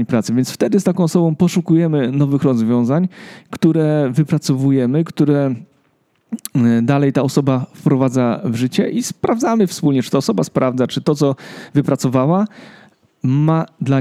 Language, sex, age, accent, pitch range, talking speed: Polish, male, 40-59, native, 130-170 Hz, 135 wpm